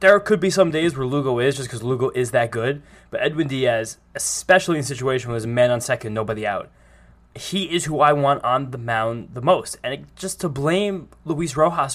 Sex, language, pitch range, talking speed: male, English, 120-155 Hz, 225 wpm